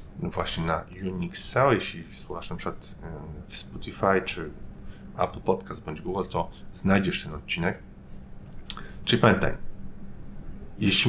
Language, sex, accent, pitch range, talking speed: Polish, male, native, 95-110 Hz, 120 wpm